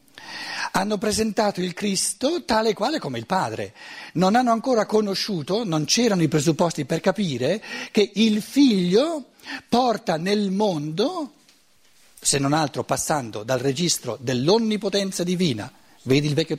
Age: 60-79